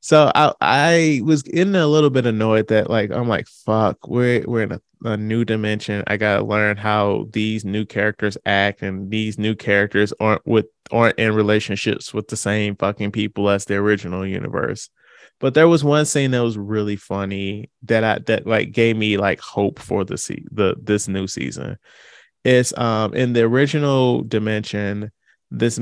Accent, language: American, English